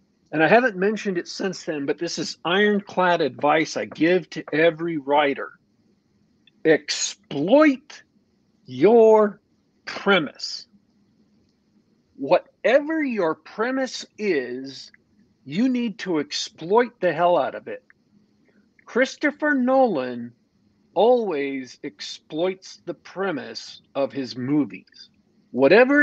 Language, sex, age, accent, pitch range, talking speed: English, male, 50-69, American, 155-235 Hz, 100 wpm